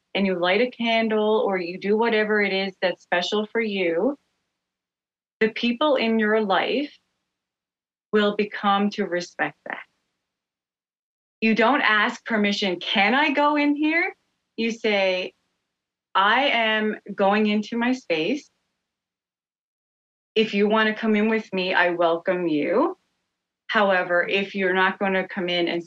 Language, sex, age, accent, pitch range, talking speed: English, female, 30-49, American, 180-220 Hz, 145 wpm